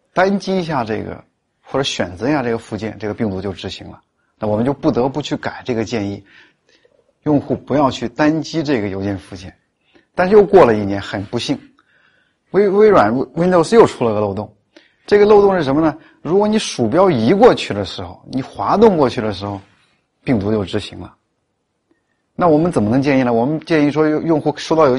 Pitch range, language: 110-160 Hz, Chinese